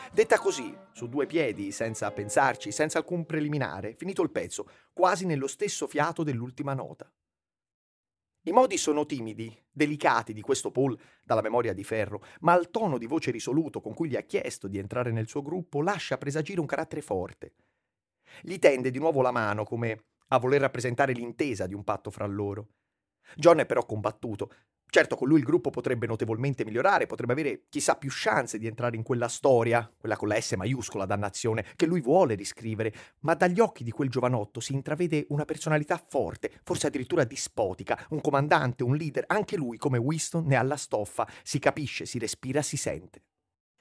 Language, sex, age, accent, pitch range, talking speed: Italian, male, 30-49, native, 115-160 Hz, 180 wpm